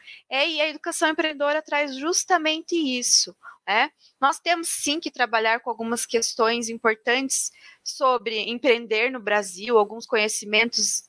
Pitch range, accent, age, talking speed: 230-300 Hz, Brazilian, 20-39, 125 wpm